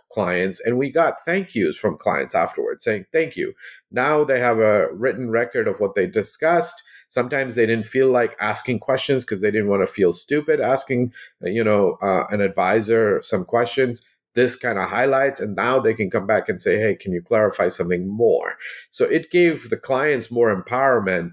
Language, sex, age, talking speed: English, male, 50-69, 195 wpm